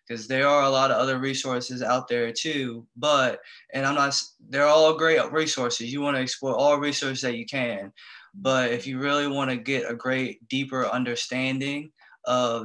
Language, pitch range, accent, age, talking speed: English, 120-140 Hz, American, 20-39, 190 wpm